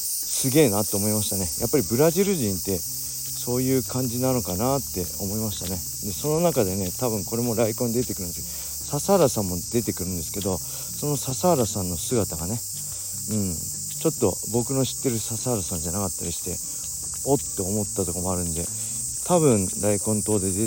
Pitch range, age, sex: 95-125 Hz, 40-59, male